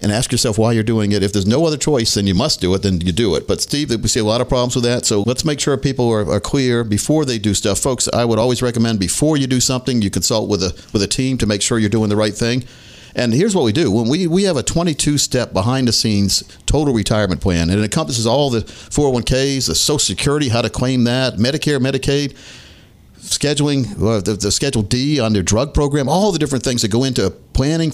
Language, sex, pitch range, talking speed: English, male, 110-140 Hz, 245 wpm